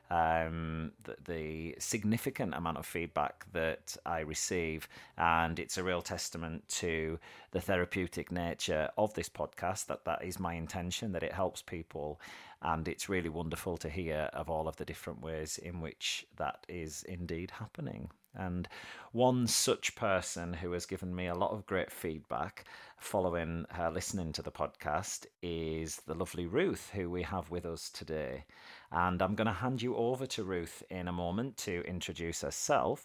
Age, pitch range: 30-49, 85-95 Hz